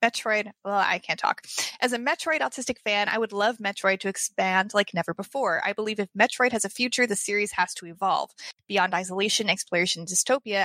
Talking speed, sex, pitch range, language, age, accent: 205 wpm, female, 190-230 Hz, English, 20-39, American